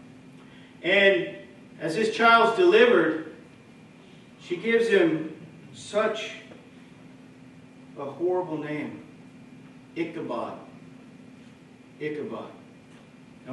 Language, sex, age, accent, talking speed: English, male, 50-69, American, 65 wpm